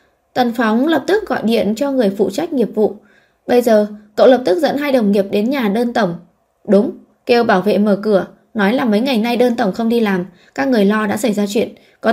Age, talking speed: 20-39, 240 wpm